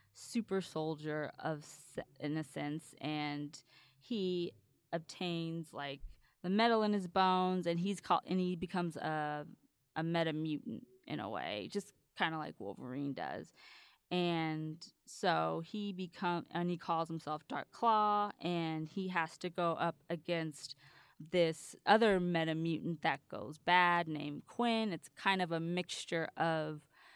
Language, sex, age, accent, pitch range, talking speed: English, female, 20-39, American, 155-180 Hz, 140 wpm